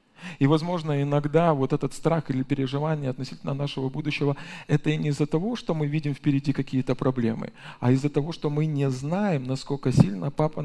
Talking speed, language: 180 wpm, Russian